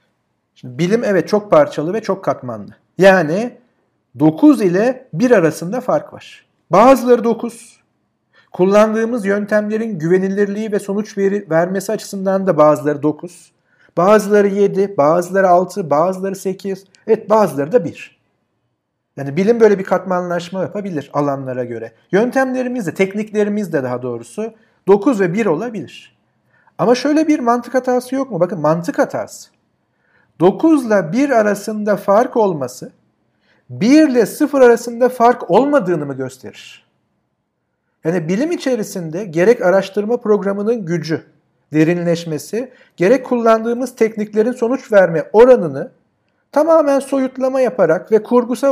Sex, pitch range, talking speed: male, 175-240 Hz, 120 wpm